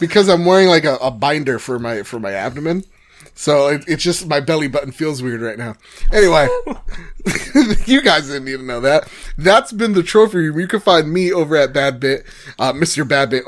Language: English